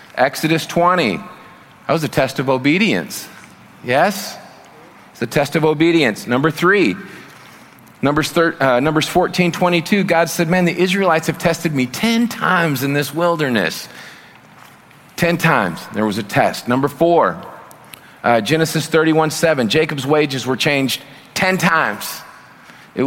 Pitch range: 140-170 Hz